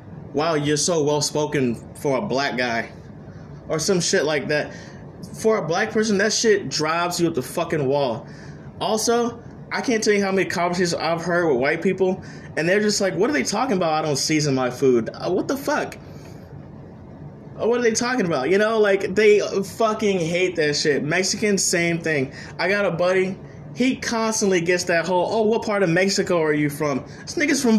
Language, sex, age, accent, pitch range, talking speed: English, male, 20-39, American, 160-225 Hz, 200 wpm